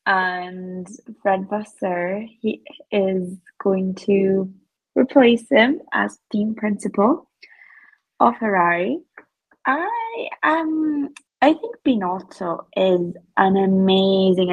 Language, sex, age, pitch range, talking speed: English, female, 20-39, 175-235 Hz, 90 wpm